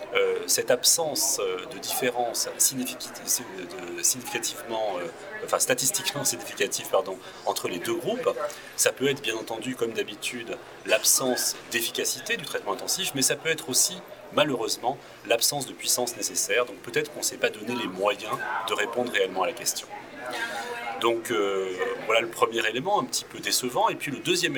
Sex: male